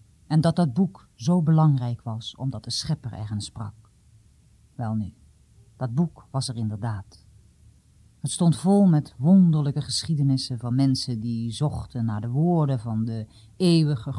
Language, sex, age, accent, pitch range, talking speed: Dutch, female, 40-59, Dutch, 110-155 Hz, 150 wpm